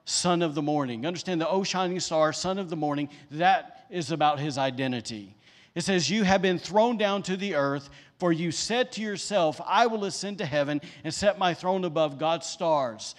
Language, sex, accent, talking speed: English, male, American, 205 wpm